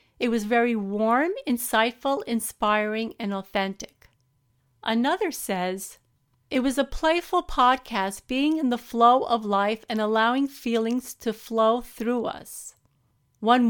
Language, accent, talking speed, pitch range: English, American, 125 wpm, 215-270 Hz